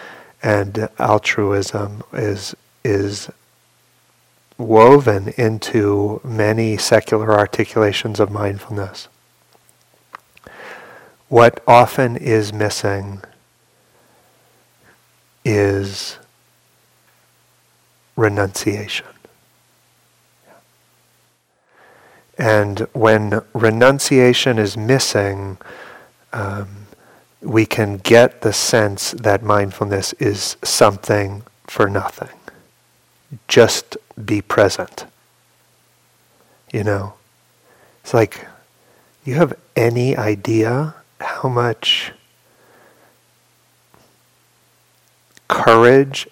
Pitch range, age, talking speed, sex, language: 100-120 Hz, 40-59, 60 wpm, male, English